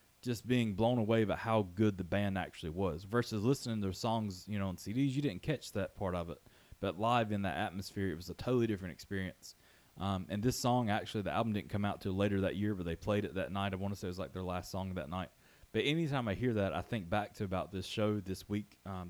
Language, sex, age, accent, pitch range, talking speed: English, male, 20-39, American, 95-115 Hz, 265 wpm